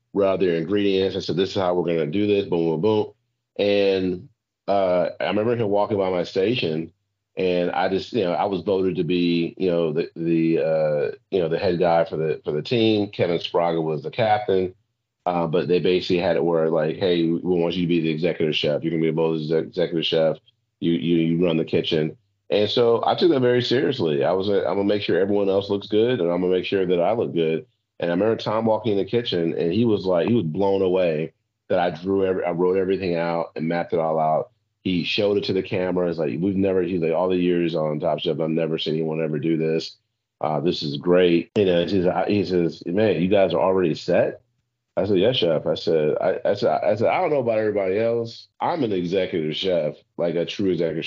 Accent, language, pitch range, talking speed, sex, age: American, English, 85-100 Hz, 245 wpm, male, 40-59